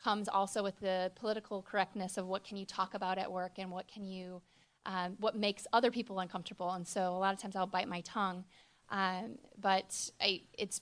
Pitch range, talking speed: 190-220 Hz, 210 wpm